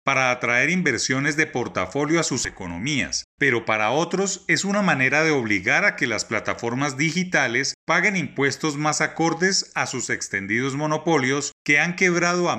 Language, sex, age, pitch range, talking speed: Spanish, male, 30-49, 125-170 Hz, 155 wpm